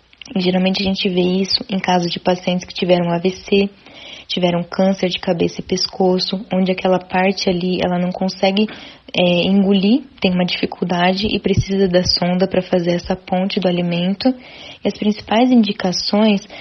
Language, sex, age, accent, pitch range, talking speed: Portuguese, female, 10-29, Brazilian, 180-205 Hz, 155 wpm